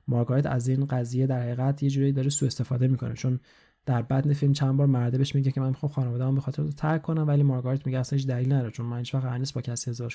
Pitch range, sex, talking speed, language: 125-140 Hz, male, 230 wpm, Persian